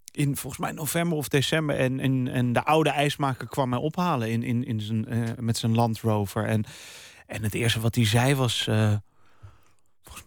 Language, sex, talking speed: Dutch, male, 200 wpm